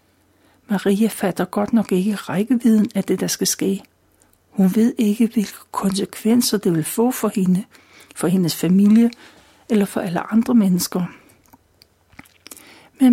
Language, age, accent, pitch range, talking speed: Danish, 60-79, native, 190-230 Hz, 135 wpm